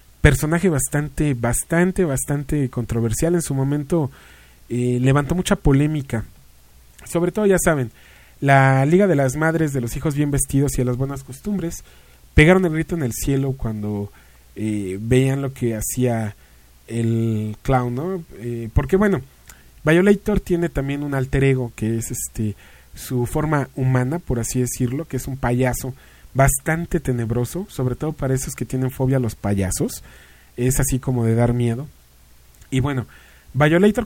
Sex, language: male, English